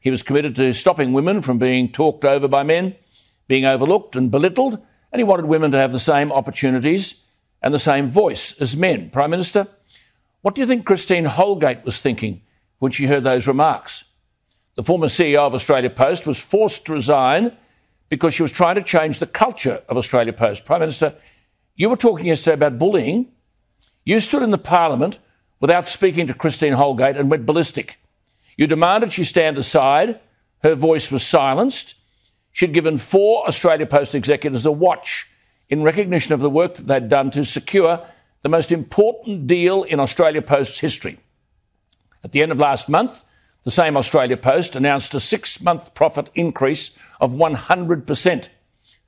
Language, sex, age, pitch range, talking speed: English, male, 60-79, 135-175 Hz, 170 wpm